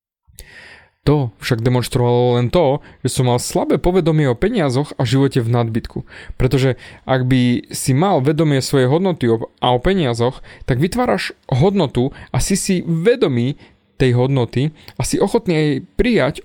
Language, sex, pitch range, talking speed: Slovak, male, 125-165 Hz, 150 wpm